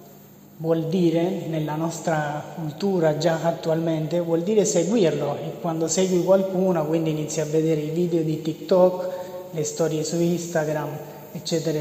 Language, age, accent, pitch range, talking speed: Italian, 30-49, native, 160-195 Hz, 135 wpm